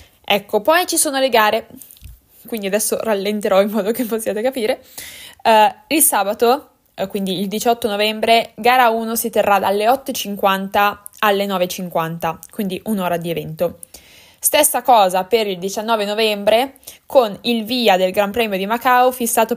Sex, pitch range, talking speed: female, 185-240 Hz, 150 wpm